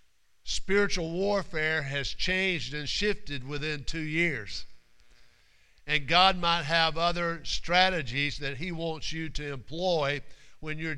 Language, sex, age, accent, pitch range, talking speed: English, male, 50-69, American, 145-170 Hz, 125 wpm